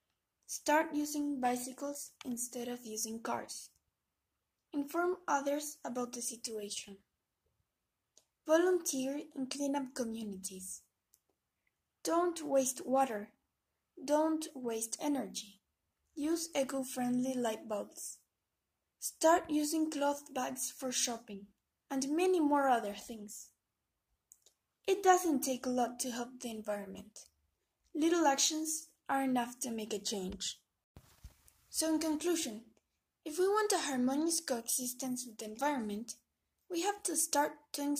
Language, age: English, 20-39